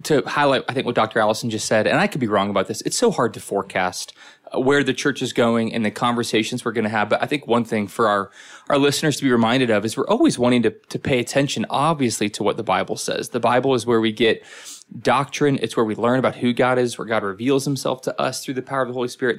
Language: English